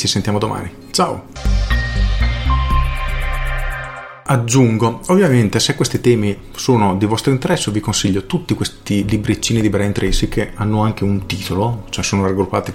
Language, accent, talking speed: Italian, native, 135 wpm